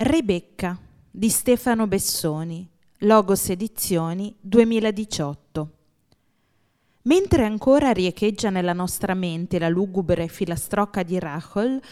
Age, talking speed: 20-39, 90 wpm